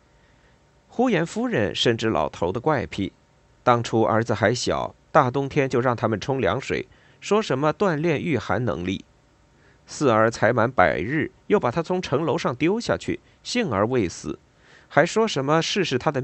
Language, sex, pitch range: Chinese, male, 110-170 Hz